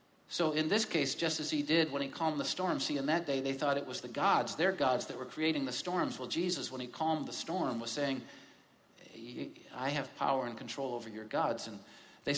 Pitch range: 120-150 Hz